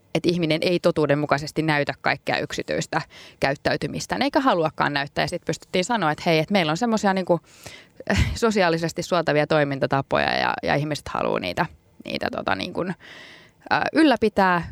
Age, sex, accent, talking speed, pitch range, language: 20-39, female, native, 140 wpm, 145-175 Hz, Finnish